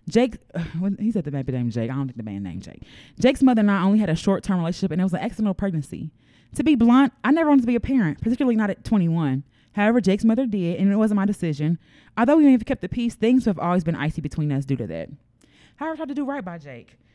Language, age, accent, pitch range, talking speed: English, 20-39, American, 155-225 Hz, 275 wpm